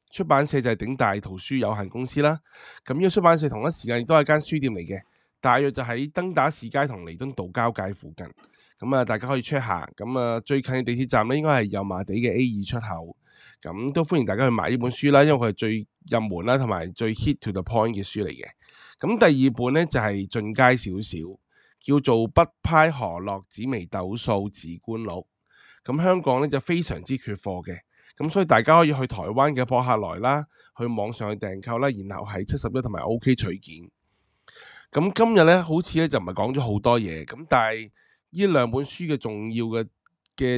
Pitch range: 105-135 Hz